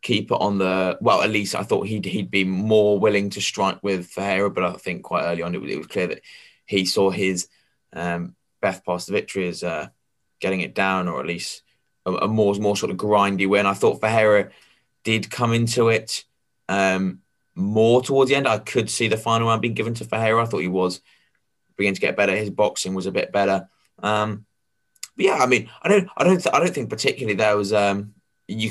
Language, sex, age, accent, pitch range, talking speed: English, male, 20-39, British, 95-110 Hz, 220 wpm